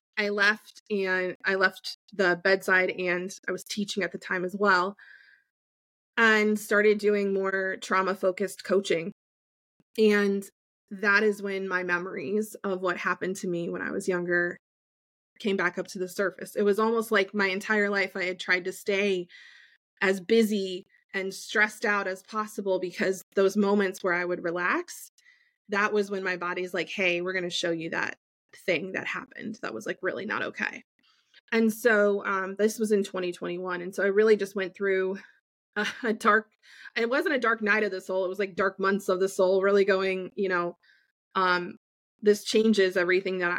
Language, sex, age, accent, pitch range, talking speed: English, female, 20-39, American, 185-210 Hz, 185 wpm